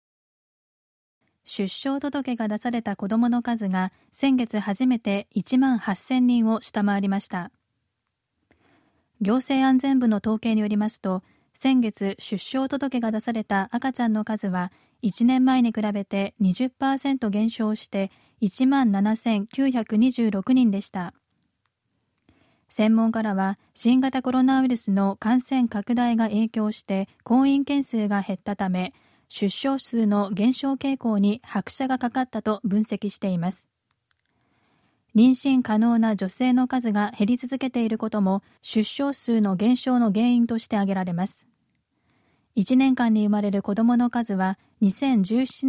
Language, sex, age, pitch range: Japanese, female, 20-39, 205-250 Hz